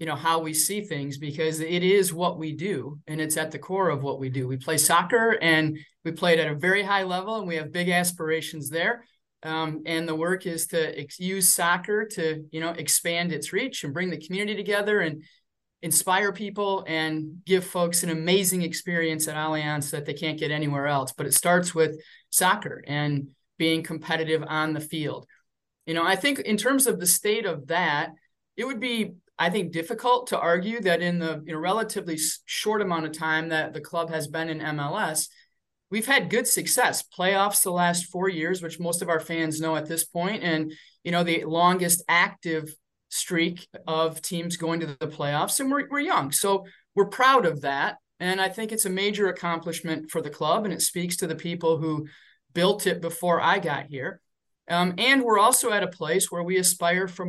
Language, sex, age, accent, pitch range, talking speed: English, male, 30-49, American, 160-190 Hz, 205 wpm